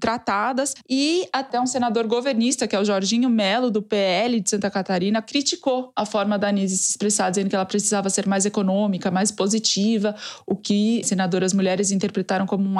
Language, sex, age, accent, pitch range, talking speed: Portuguese, female, 20-39, Brazilian, 195-230 Hz, 185 wpm